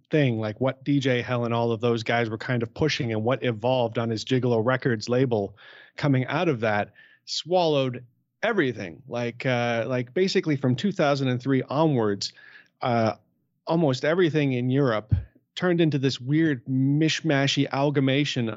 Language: English